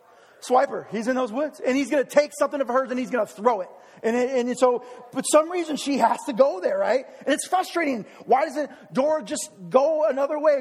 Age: 30-49